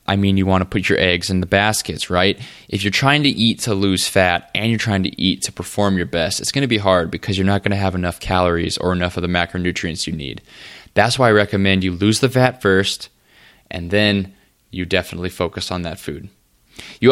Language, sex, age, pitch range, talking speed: English, male, 20-39, 90-105 Hz, 235 wpm